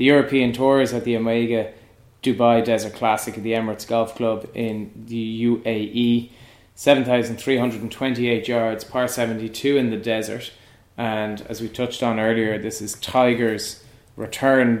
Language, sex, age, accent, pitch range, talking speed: English, male, 20-39, Irish, 110-120 Hz, 140 wpm